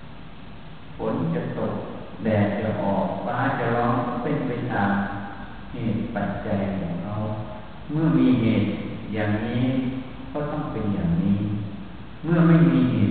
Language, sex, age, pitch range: Thai, male, 60-79, 100-130 Hz